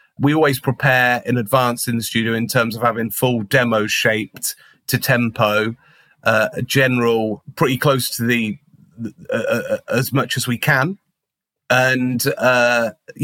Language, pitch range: English, 125-150 Hz